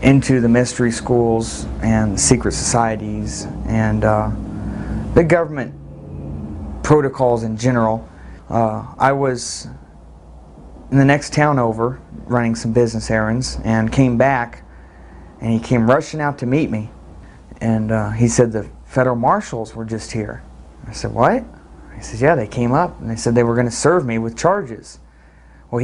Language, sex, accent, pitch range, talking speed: English, male, American, 105-125 Hz, 160 wpm